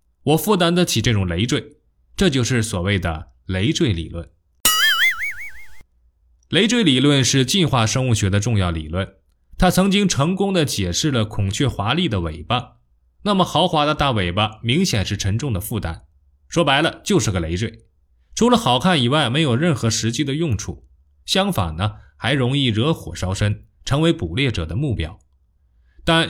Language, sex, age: Chinese, male, 20-39